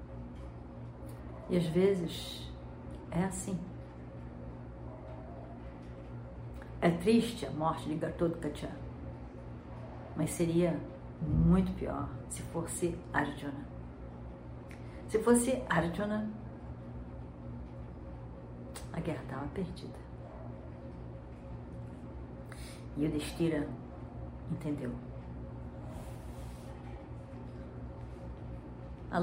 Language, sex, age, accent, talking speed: Portuguese, female, 50-69, Brazilian, 65 wpm